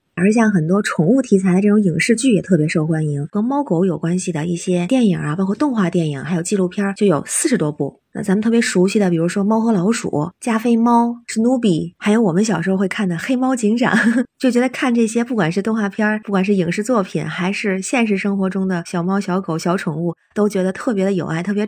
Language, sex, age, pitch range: Chinese, female, 20-39, 180-225 Hz